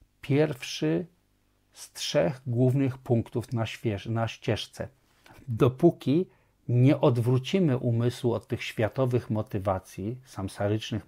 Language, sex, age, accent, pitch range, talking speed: Polish, male, 50-69, native, 110-135 Hz, 85 wpm